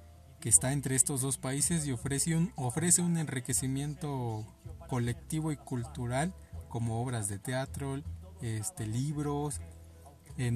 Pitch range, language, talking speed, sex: 110-140 Hz, Spanish, 115 wpm, male